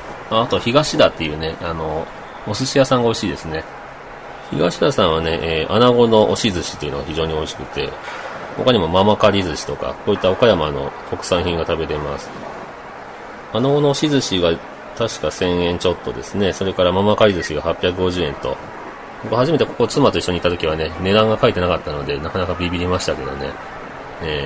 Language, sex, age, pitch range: Japanese, male, 40-59, 90-120 Hz